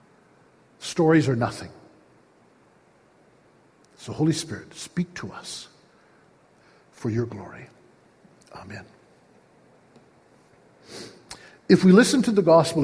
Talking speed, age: 90 wpm, 60-79